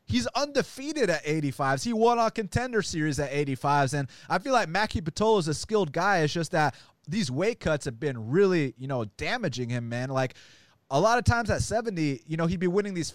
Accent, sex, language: American, male, English